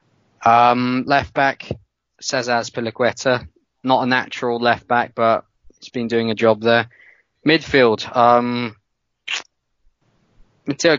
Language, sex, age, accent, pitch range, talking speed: English, male, 20-39, British, 115-135 Hz, 110 wpm